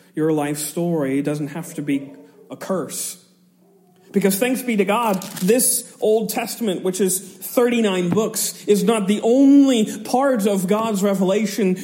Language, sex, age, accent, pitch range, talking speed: English, male, 40-59, American, 160-210 Hz, 145 wpm